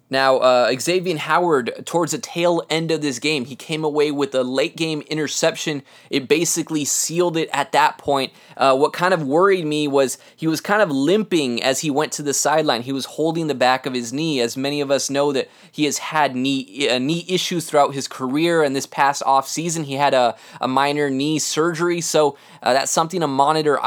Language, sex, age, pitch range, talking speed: English, male, 20-39, 135-160 Hz, 210 wpm